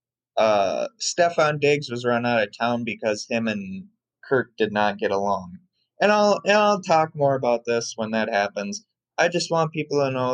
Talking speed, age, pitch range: 190 wpm, 20-39, 120-145 Hz